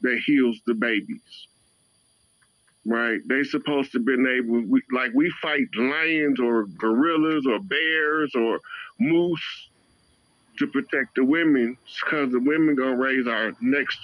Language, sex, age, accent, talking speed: English, male, 50-69, American, 135 wpm